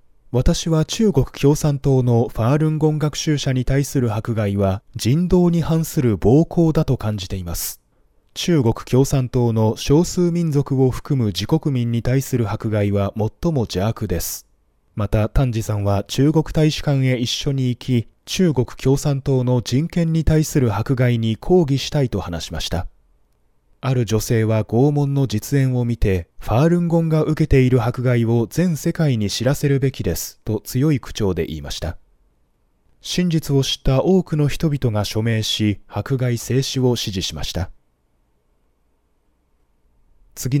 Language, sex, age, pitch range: Japanese, male, 20-39, 100-145 Hz